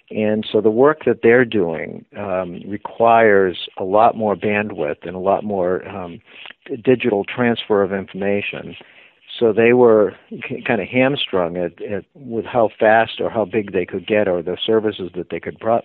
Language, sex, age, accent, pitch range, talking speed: English, male, 50-69, American, 100-115 Hz, 180 wpm